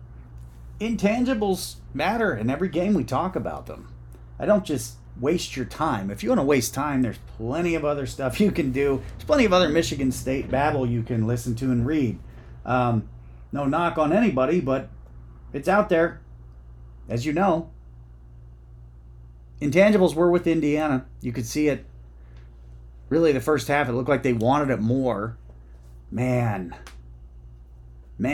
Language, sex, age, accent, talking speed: English, male, 30-49, American, 160 wpm